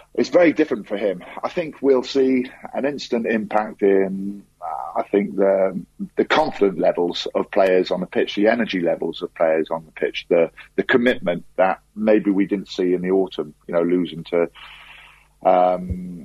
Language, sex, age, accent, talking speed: English, male, 40-59, British, 175 wpm